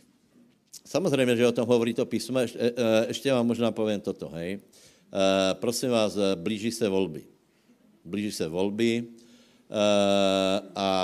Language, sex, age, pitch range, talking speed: Slovak, male, 60-79, 95-115 Hz, 130 wpm